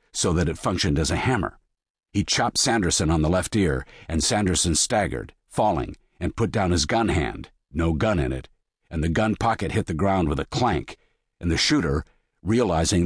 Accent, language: American, English